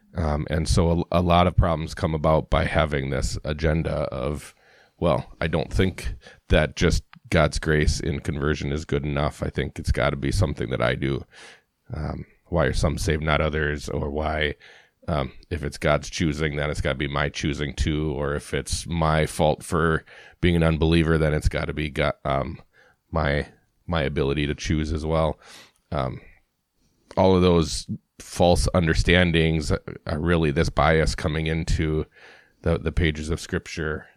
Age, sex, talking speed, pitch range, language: 30-49, male, 175 wpm, 75-85 Hz, English